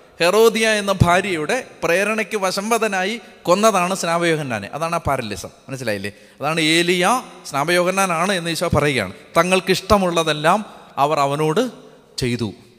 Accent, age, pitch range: native, 30-49, 135-195 Hz